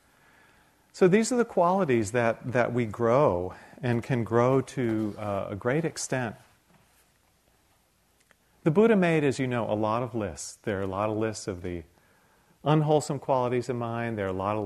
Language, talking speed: English, 180 wpm